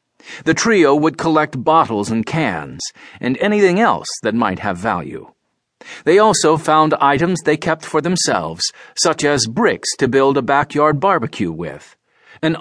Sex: male